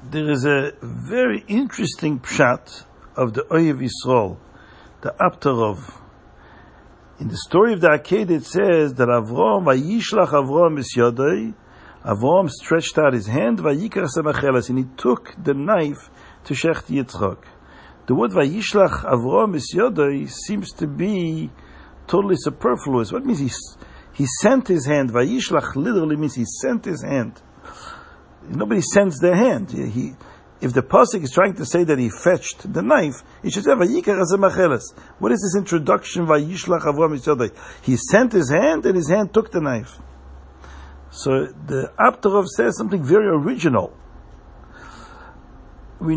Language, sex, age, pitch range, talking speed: English, male, 60-79, 130-185 Hz, 130 wpm